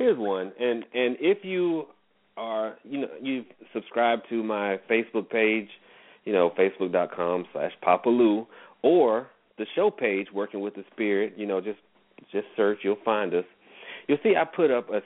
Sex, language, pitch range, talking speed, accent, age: male, English, 105-155 Hz, 165 wpm, American, 40-59